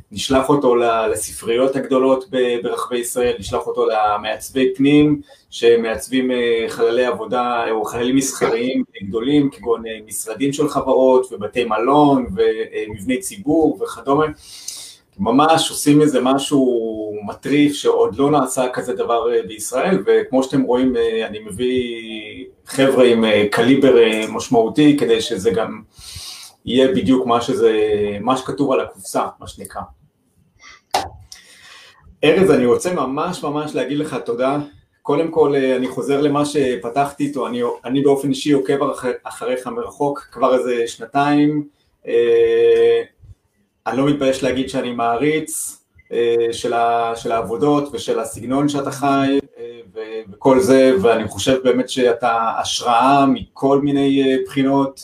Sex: male